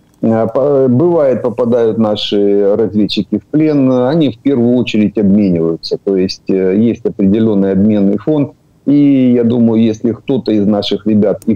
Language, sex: Ukrainian, male